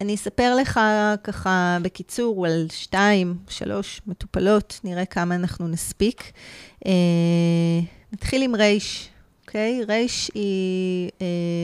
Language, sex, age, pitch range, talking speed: Hebrew, female, 30-49, 175-210 Hz, 100 wpm